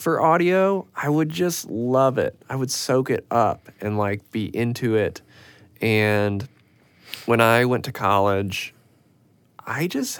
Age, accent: 20-39, American